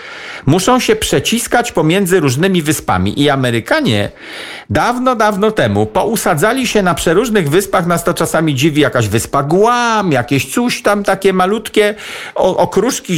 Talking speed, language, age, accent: 130 wpm, Polish, 50-69, native